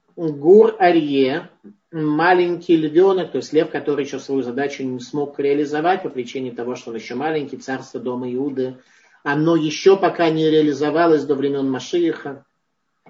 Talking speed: 140 wpm